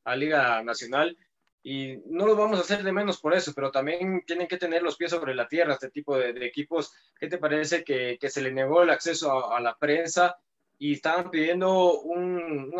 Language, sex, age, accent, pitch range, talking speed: Spanish, male, 20-39, Mexican, 130-175 Hz, 220 wpm